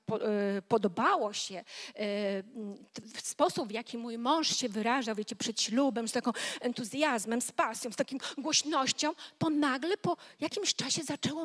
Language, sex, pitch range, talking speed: Polish, female, 240-300 Hz, 140 wpm